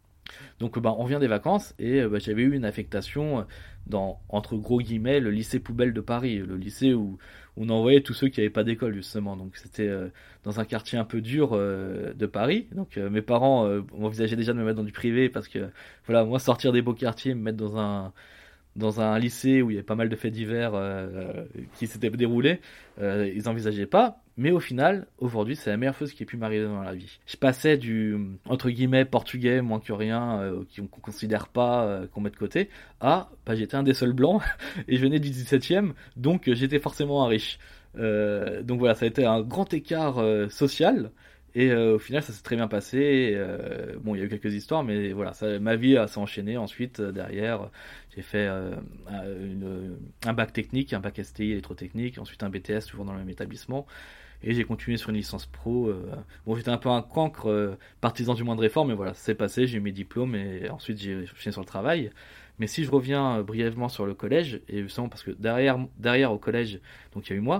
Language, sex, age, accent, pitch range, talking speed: French, male, 20-39, French, 105-125 Hz, 225 wpm